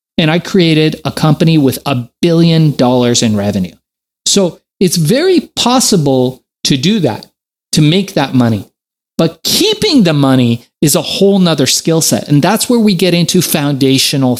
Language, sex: English, male